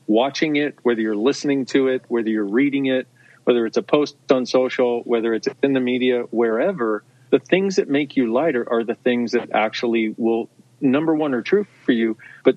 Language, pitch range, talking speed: English, 115-140 Hz, 200 wpm